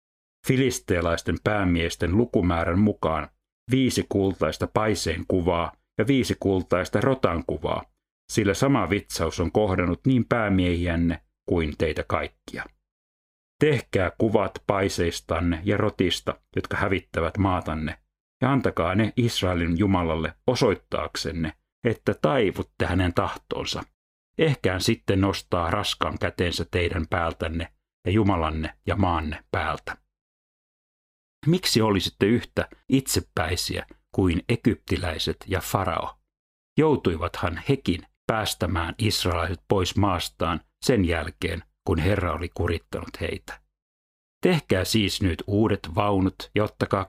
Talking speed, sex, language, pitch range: 100 wpm, male, Finnish, 85-110 Hz